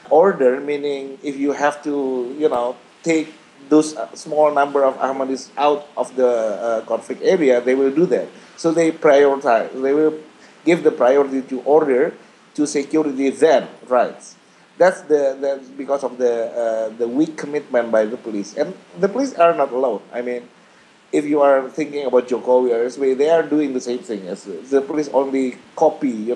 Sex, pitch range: male, 125-155 Hz